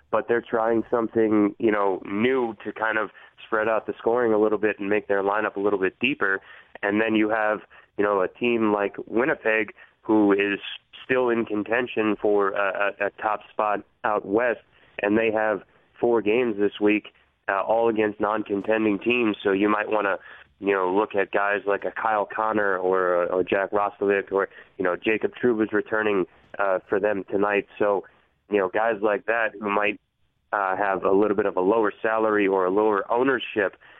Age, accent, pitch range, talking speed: 20-39, American, 100-115 Hz, 195 wpm